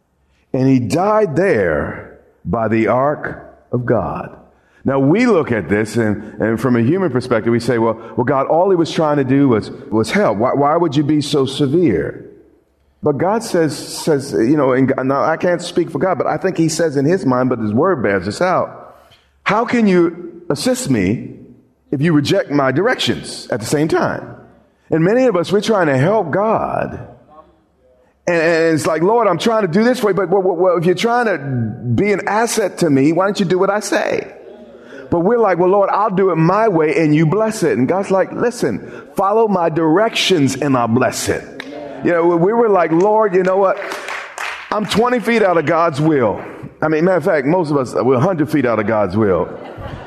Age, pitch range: 40-59, 135-195 Hz